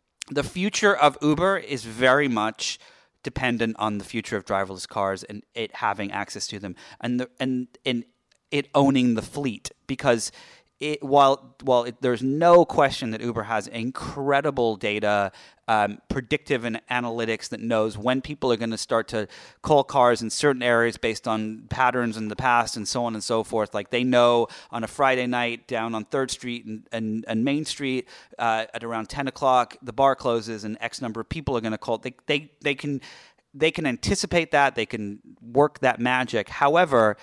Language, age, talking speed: English, 30-49, 190 wpm